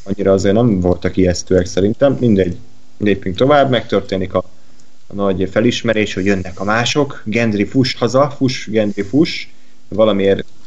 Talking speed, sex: 140 wpm, male